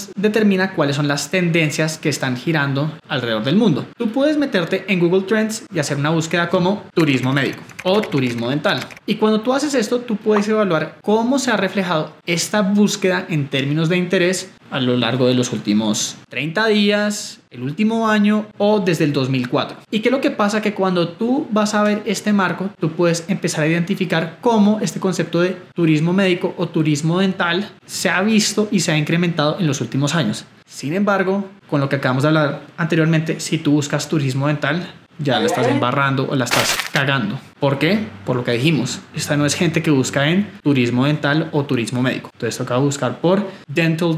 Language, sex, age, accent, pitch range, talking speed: Spanish, male, 20-39, Colombian, 150-195 Hz, 195 wpm